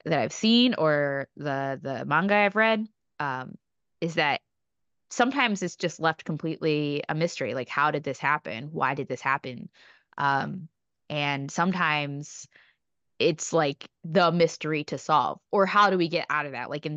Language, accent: English, American